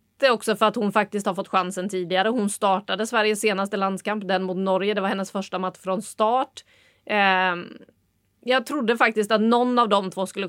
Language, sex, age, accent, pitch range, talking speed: English, female, 30-49, Swedish, 195-225 Hz, 195 wpm